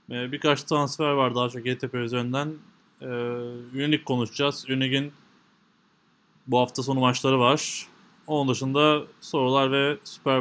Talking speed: 120 wpm